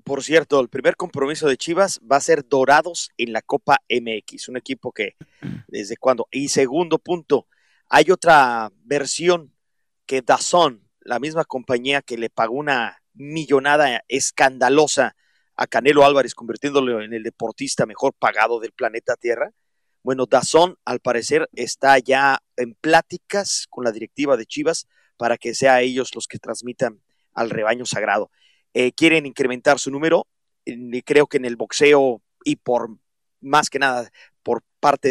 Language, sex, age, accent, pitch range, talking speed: Spanish, male, 40-59, Mexican, 125-160 Hz, 155 wpm